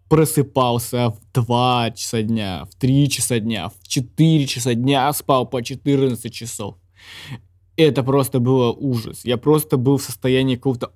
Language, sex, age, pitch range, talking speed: Russian, male, 20-39, 120-150 Hz, 150 wpm